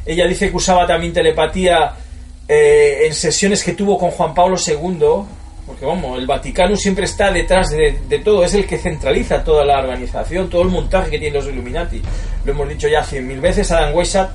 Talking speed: 200 wpm